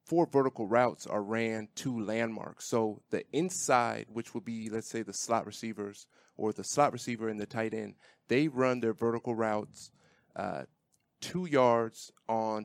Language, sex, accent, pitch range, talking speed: English, male, American, 110-125 Hz, 165 wpm